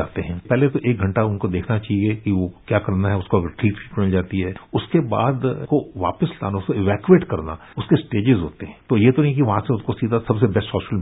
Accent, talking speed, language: native, 230 wpm, Hindi